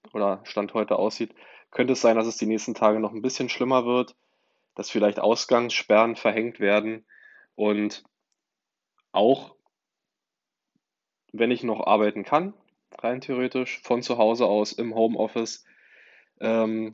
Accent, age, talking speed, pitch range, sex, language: German, 10-29, 135 wpm, 105-115 Hz, male, German